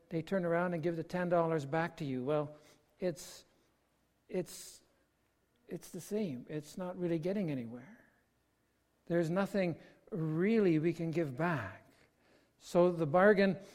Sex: male